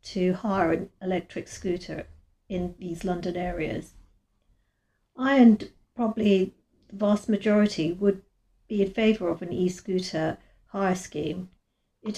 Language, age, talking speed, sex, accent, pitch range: English, 50-69, 125 wpm, female, British, 175-210 Hz